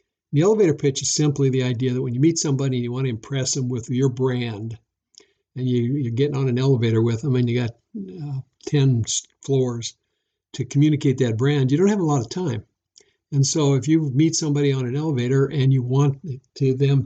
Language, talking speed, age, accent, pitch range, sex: English, 215 wpm, 60-79, American, 125-145 Hz, male